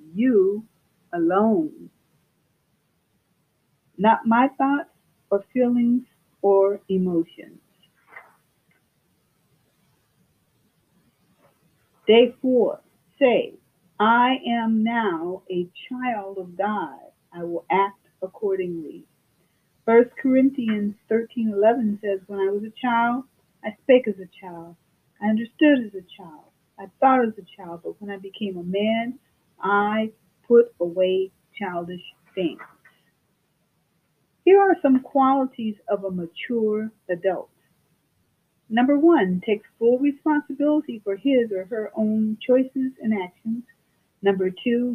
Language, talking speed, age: English, 110 wpm, 40-59